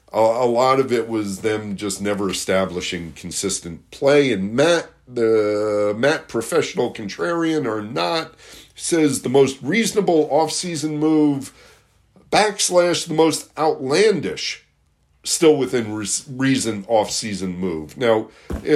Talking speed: 120 wpm